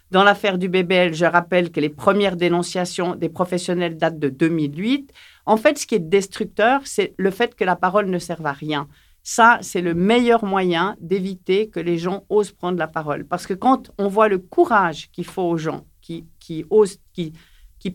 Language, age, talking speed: French, 50-69, 200 wpm